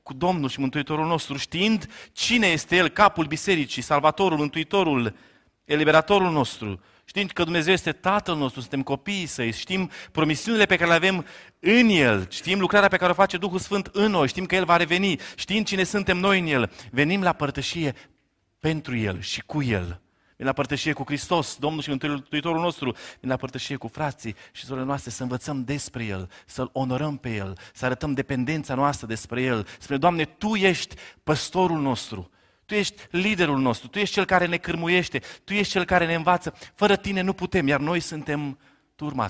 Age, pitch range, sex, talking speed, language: 30-49, 120-175 Hz, male, 185 wpm, Romanian